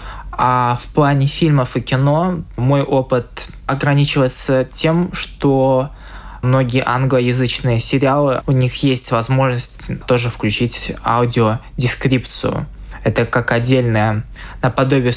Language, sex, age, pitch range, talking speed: Russian, male, 20-39, 120-145 Hz, 100 wpm